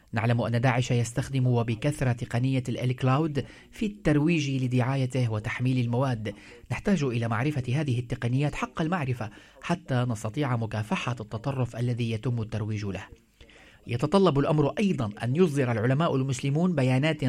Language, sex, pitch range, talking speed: Arabic, male, 120-145 Hz, 120 wpm